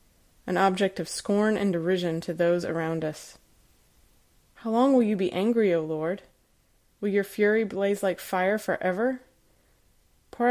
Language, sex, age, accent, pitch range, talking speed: English, female, 20-39, American, 165-200 Hz, 155 wpm